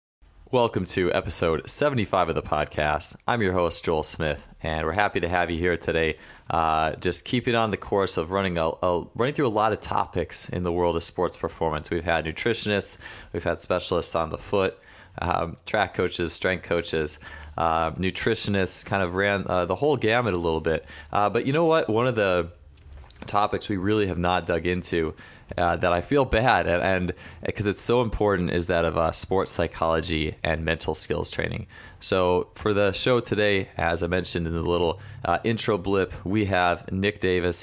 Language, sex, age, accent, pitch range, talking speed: English, male, 20-39, American, 85-100 Hz, 195 wpm